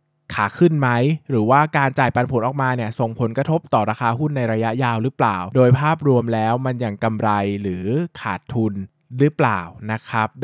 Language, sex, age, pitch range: Thai, male, 20-39, 110-135 Hz